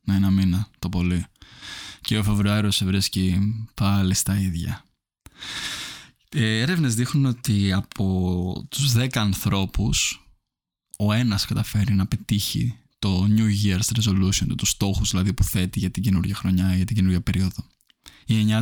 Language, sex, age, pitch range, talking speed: Greek, male, 20-39, 100-115 Hz, 140 wpm